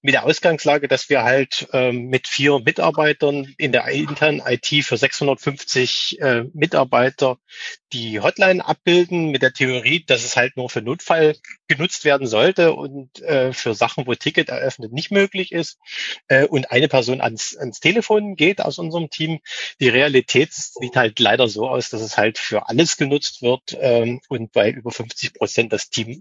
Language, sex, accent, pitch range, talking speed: German, male, German, 100-150 Hz, 170 wpm